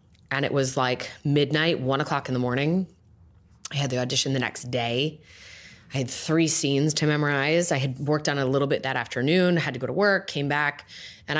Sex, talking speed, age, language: female, 220 wpm, 20-39, English